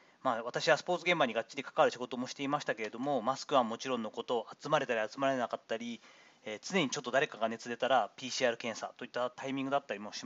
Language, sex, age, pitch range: Japanese, male, 40-59, 125-180 Hz